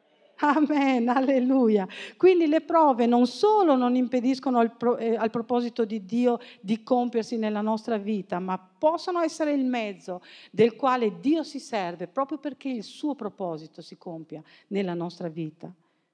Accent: native